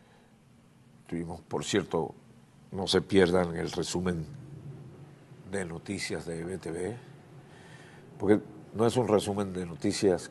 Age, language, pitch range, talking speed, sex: 60-79, Spanish, 100-145 Hz, 110 wpm, male